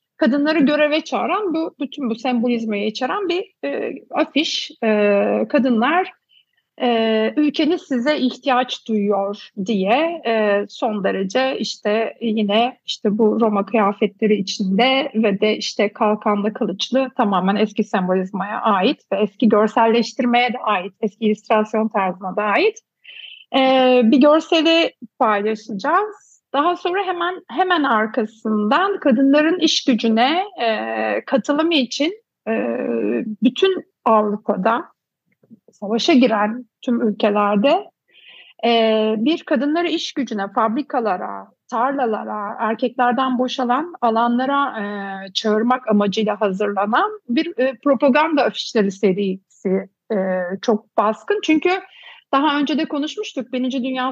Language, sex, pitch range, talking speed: Turkish, female, 215-290 Hz, 110 wpm